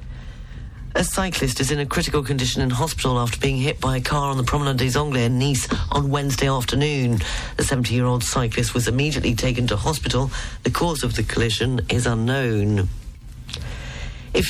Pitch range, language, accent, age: 120-150 Hz, English, British, 40-59